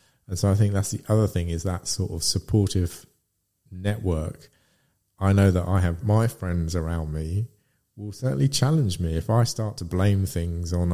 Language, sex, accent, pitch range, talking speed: English, male, British, 85-105 Hz, 185 wpm